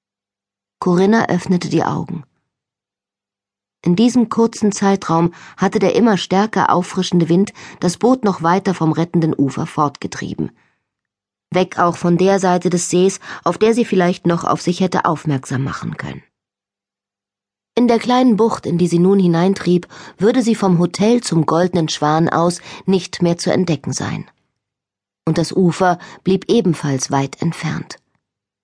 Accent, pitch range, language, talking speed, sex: German, 140-195 Hz, German, 145 wpm, female